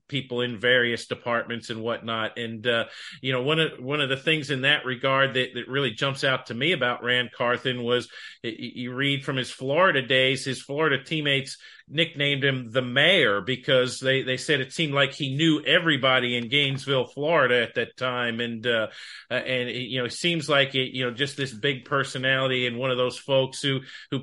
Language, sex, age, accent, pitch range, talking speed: English, male, 40-59, American, 125-140 Hz, 205 wpm